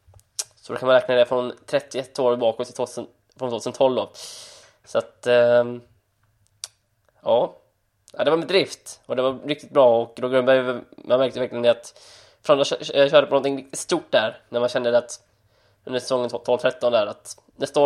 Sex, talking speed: male, 170 wpm